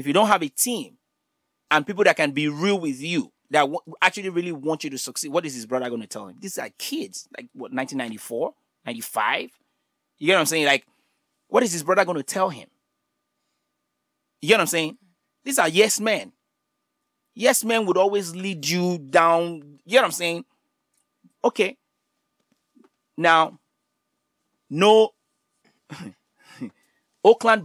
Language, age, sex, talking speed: English, 30-49, male, 165 wpm